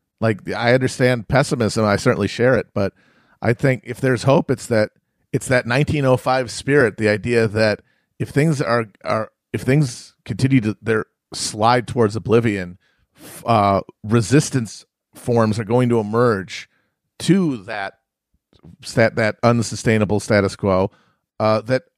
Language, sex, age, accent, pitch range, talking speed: English, male, 40-59, American, 110-135 Hz, 140 wpm